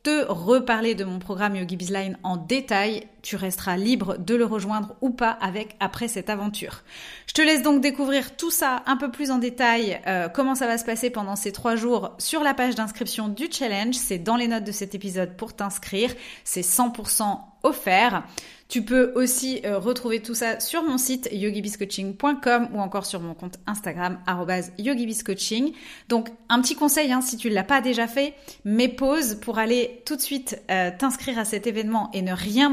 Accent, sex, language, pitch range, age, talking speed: French, female, French, 200-255 Hz, 30-49, 195 wpm